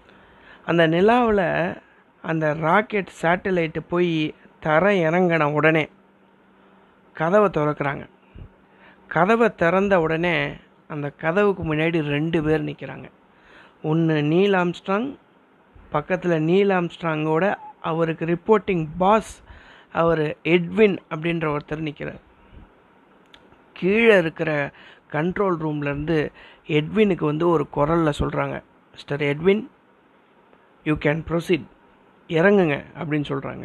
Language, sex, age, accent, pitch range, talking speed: Tamil, female, 60-79, native, 150-185 Hz, 90 wpm